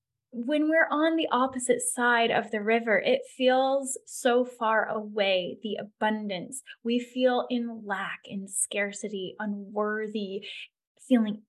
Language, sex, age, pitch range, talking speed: English, female, 10-29, 210-265 Hz, 125 wpm